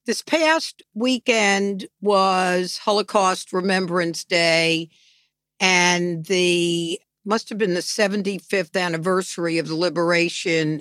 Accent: American